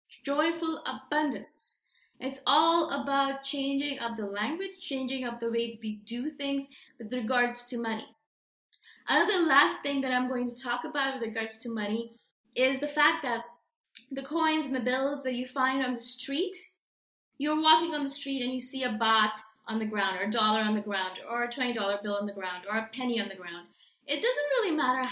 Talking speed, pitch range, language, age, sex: 205 wpm, 230-285 Hz, English, 20-39, female